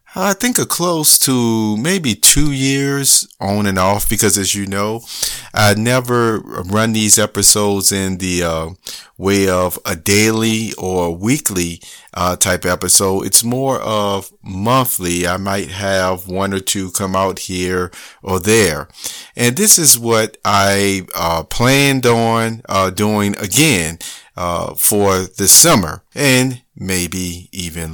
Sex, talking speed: male, 140 wpm